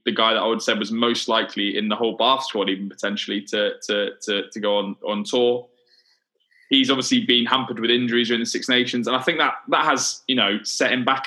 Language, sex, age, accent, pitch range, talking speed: English, male, 20-39, British, 115-135 Hz, 240 wpm